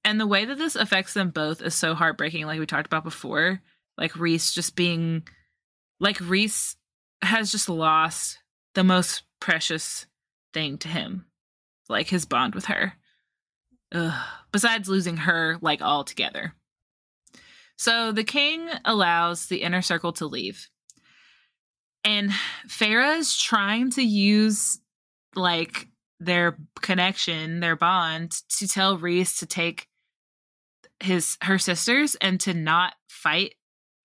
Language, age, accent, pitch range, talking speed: English, 20-39, American, 165-200 Hz, 130 wpm